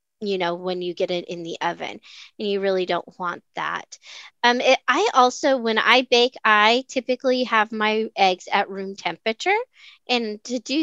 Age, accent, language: 30-49, American, English